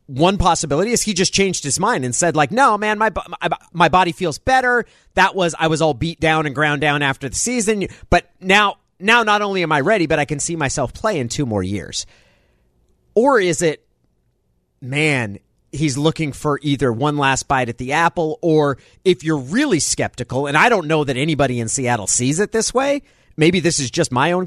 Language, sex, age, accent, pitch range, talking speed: English, male, 40-59, American, 125-165 Hz, 215 wpm